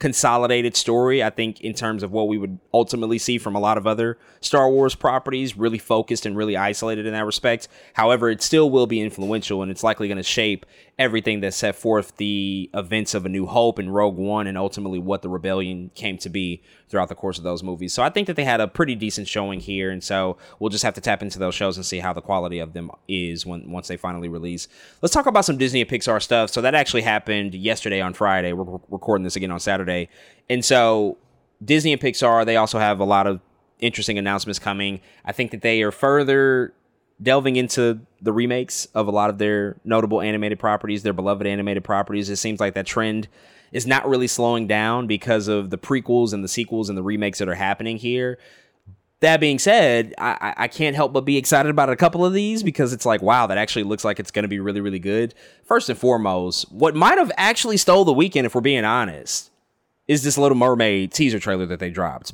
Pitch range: 100-120 Hz